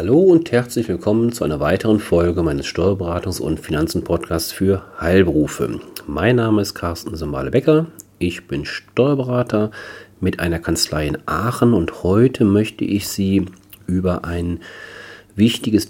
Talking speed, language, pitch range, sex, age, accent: 135 wpm, German, 85-110 Hz, male, 40-59, German